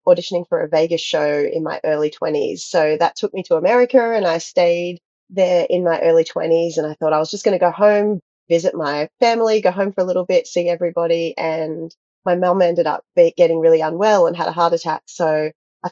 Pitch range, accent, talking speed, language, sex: 170-235 Hz, Australian, 220 wpm, English, female